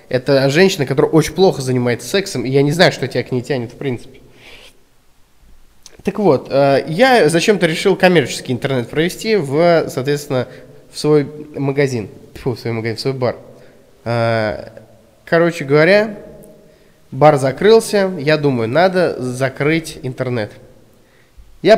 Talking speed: 130 wpm